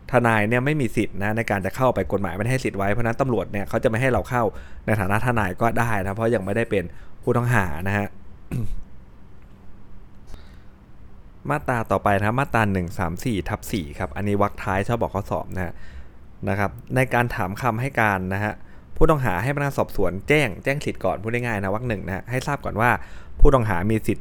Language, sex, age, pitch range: Thai, male, 20-39, 95-120 Hz